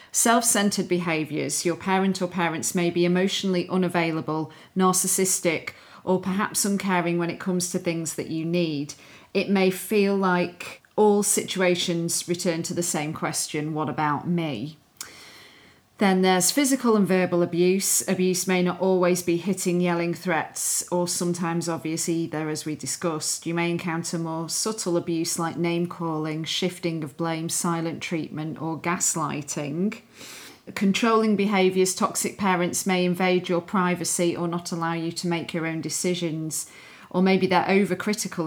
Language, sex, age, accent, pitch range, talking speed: English, female, 40-59, British, 165-185 Hz, 150 wpm